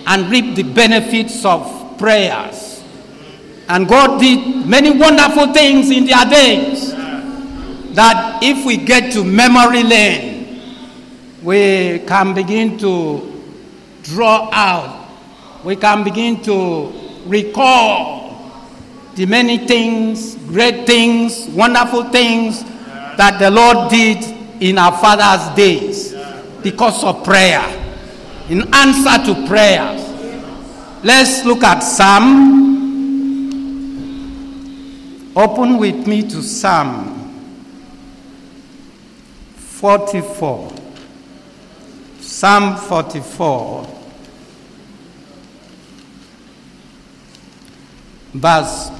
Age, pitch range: 60-79, 195-265 Hz